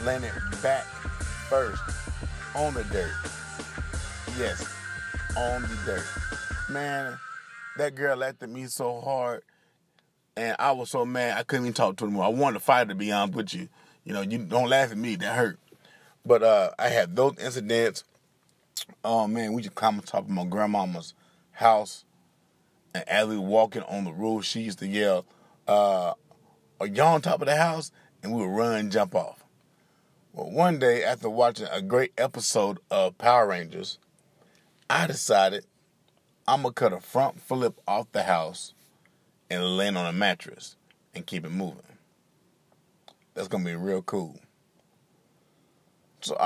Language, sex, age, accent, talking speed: English, male, 30-49, American, 170 wpm